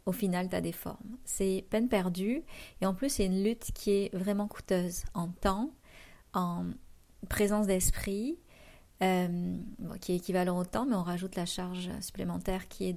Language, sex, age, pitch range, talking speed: French, female, 30-49, 180-220 Hz, 180 wpm